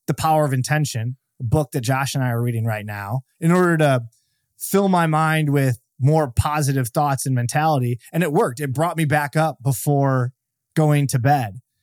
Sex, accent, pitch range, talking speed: male, American, 130-155 Hz, 195 wpm